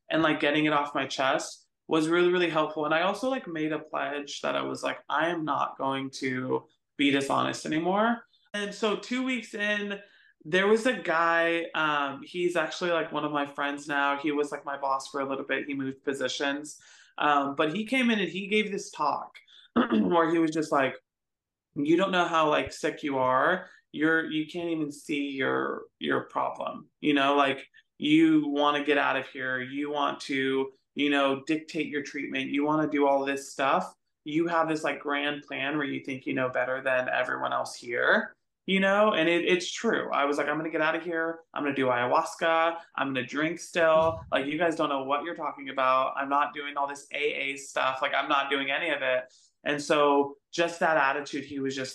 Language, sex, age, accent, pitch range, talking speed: English, male, 20-39, American, 135-165 Hz, 220 wpm